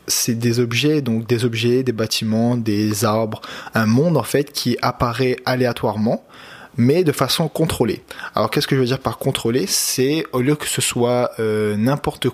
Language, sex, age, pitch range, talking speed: French, male, 20-39, 115-135 Hz, 180 wpm